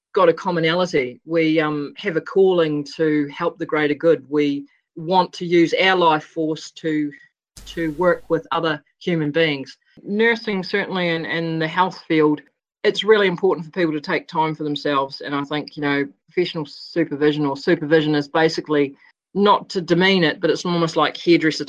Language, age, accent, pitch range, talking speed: English, 30-49, Australian, 150-180 Hz, 175 wpm